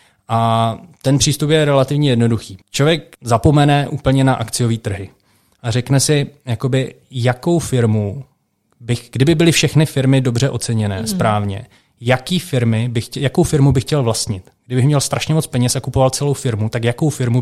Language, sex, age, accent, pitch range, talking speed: Czech, male, 20-39, native, 115-135 Hz, 160 wpm